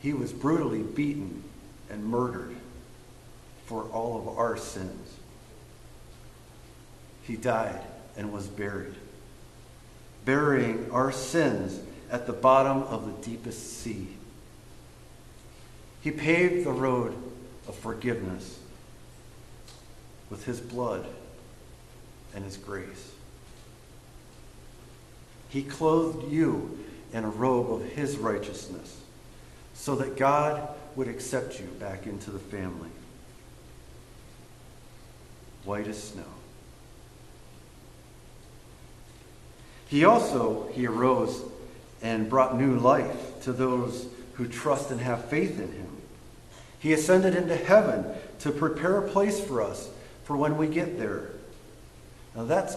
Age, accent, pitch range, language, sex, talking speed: 50-69, American, 100-140 Hz, English, male, 105 wpm